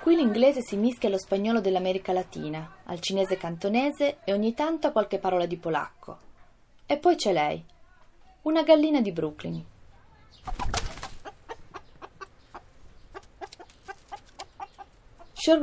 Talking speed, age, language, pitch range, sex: 110 wpm, 30-49, Italian, 180-235 Hz, female